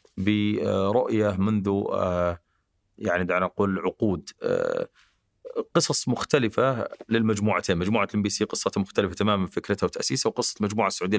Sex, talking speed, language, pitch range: male, 105 wpm, Arabic, 95-115 Hz